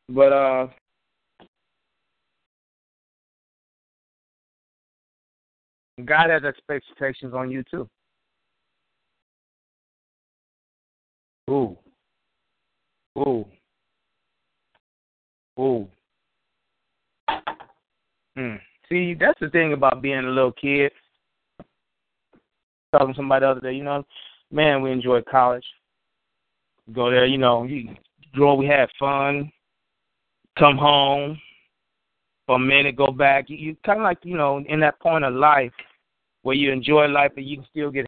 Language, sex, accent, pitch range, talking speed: English, male, American, 130-155 Hz, 110 wpm